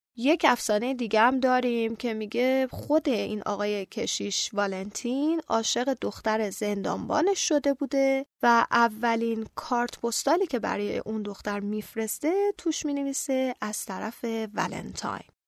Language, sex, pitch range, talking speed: Persian, female, 210-265 Hz, 125 wpm